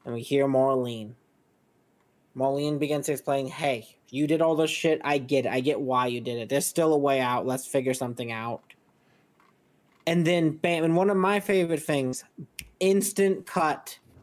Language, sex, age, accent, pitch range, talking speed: English, male, 20-39, American, 130-155 Hz, 175 wpm